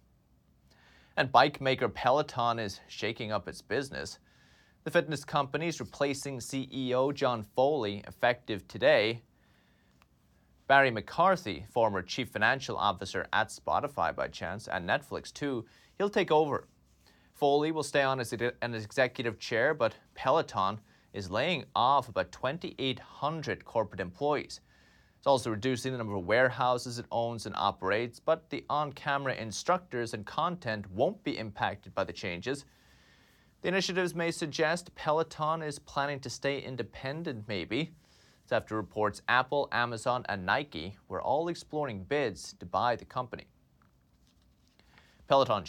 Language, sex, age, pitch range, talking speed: English, male, 30-49, 100-145 Hz, 135 wpm